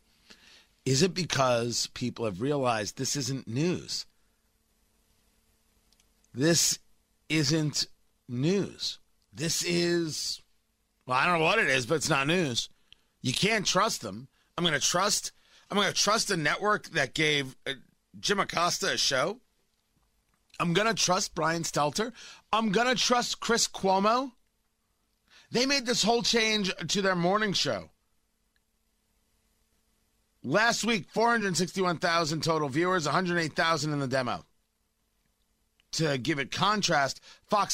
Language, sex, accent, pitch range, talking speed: English, male, American, 135-190 Hz, 140 wpm